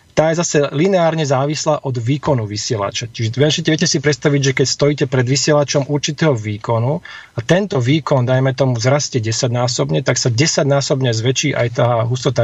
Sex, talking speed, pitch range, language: male, 160 wpm, 125-155 Hz, Slovak